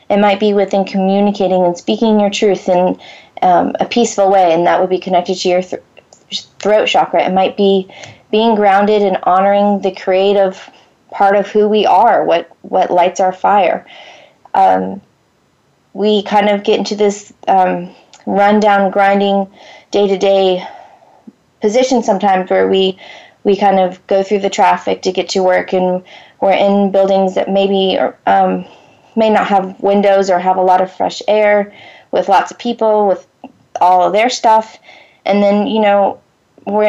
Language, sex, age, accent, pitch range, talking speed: English, female, 20-39, American, 185-210 Hz, 165 wpm